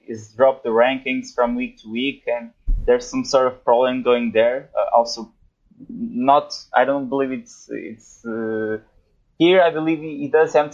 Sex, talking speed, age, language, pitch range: male, 180 wpm, 20-39, English, 120-145 Hz